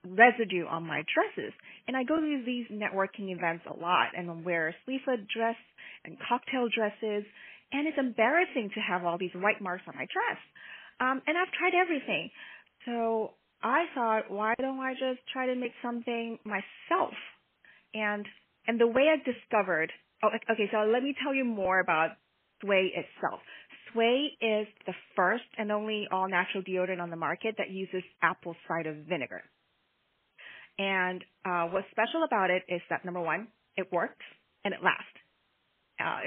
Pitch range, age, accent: 185-240 Hz, 30-49, American